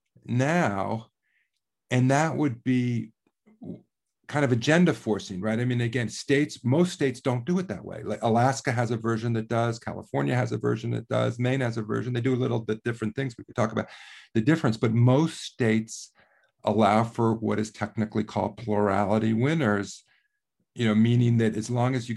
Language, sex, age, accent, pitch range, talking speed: English, male, 50-69, American, 110-130 Hz, 190 wpm